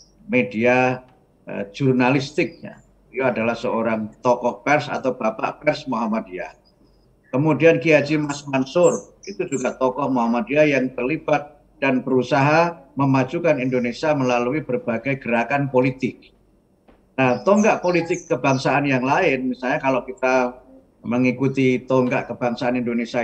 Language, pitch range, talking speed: Indonesian, 125-150 Hz, 115 wpm